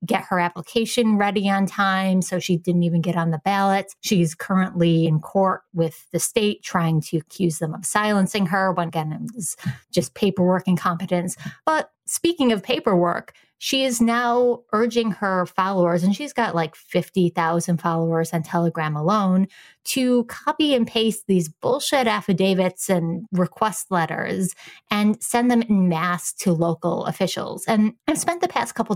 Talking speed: 160 wpm